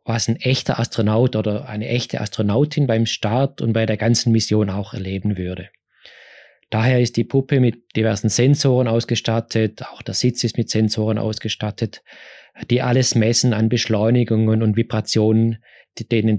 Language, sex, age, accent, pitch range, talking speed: German, male, 20-39, German, 110-130 Hz, 150 wpm